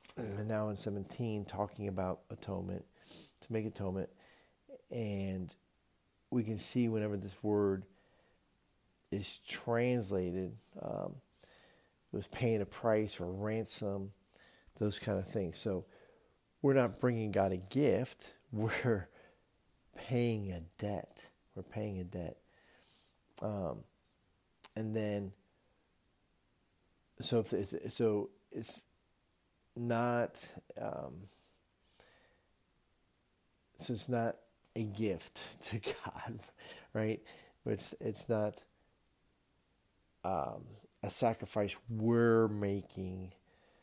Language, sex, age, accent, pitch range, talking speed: English, male, 50-69, American, 95-110 Hz, 100 wpm